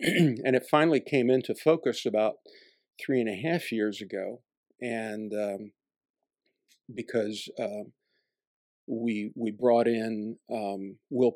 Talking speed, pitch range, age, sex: 120 wpm, 105-125 Hz, 50-69, male